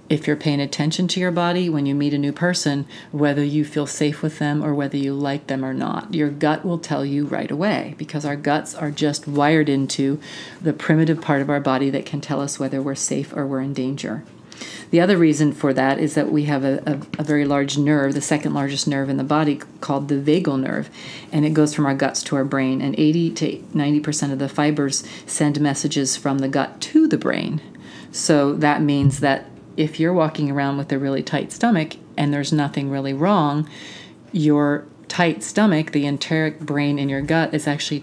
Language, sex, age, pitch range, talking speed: English, female, 40-59, 140-150 Hz, 215 wpm